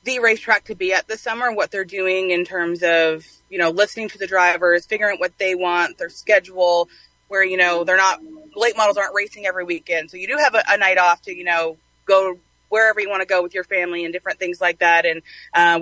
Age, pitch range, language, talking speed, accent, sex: 20-39, 175-205 Hz, English, 245 wpm, American, female